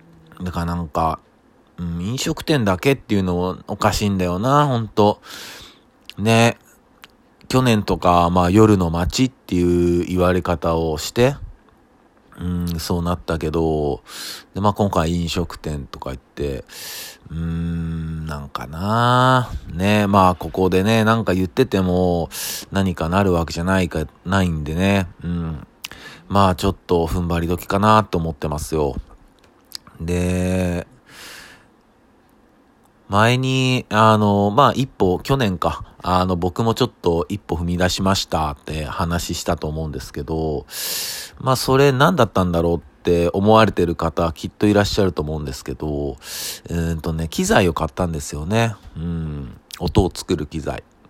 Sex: male